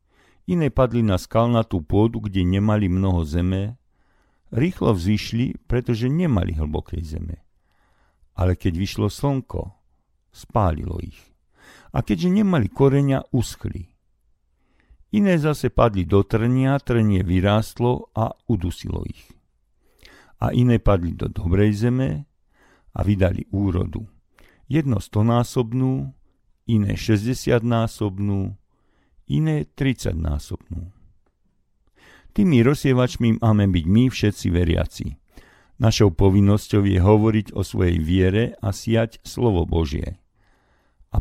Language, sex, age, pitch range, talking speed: Slovak, male, 50-69, 90-120 Hz, 105 wpm